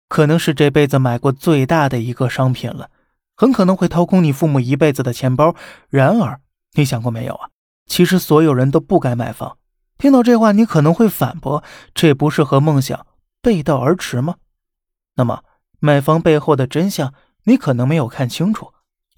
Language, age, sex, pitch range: Chinese, 20-39, male, 135-180 Hz